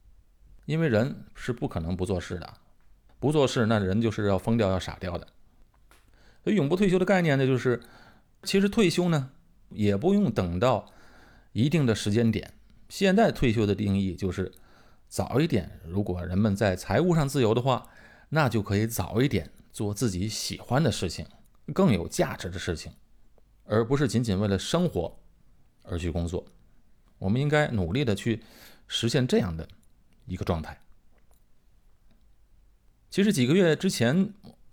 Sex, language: male, Chinese